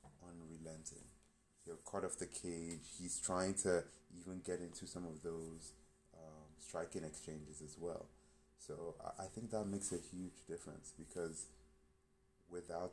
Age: 30-49